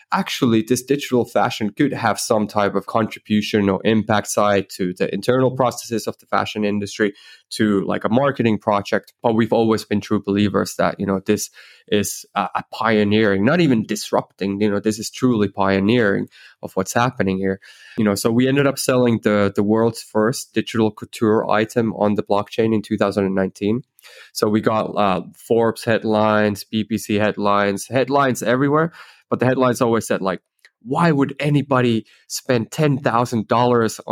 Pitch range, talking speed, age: 105-120 Hz, 160 wpm, 20-39